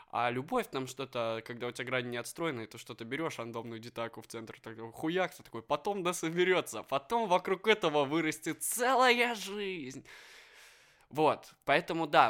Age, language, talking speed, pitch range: 20-39, Russian, 150 wpm, 115-155 Hz